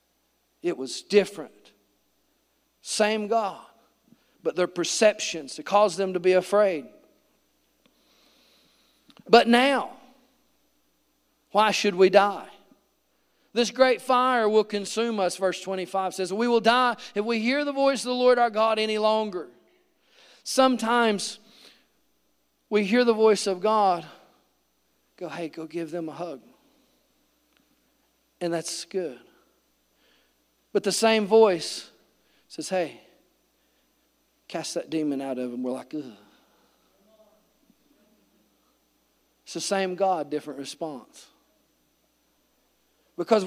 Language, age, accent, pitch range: English, 40-59, American, 185-240 Hz